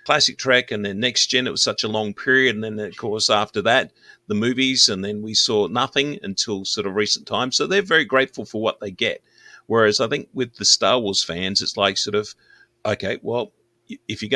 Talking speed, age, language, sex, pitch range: 225 wpm, 40-59, English, male, 100-130 Hz